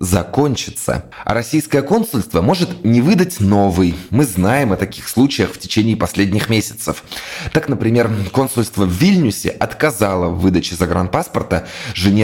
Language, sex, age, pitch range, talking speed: Russian, male, 20-39, 95-120 Hz, 130 wpm